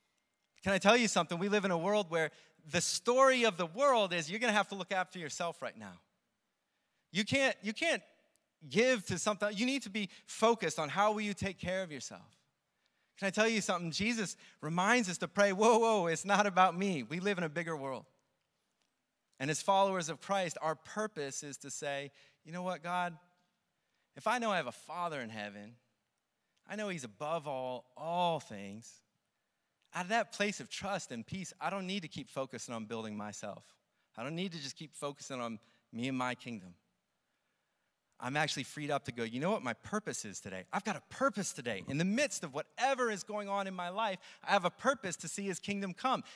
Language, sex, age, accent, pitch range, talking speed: English, male, 30-49, American, 155-210 Hz, 215 wpm